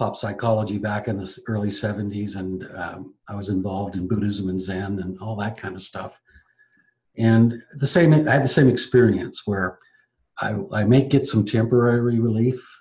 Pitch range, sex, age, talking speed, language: 100-125 Hz, male, 50-69, 175 wpm, English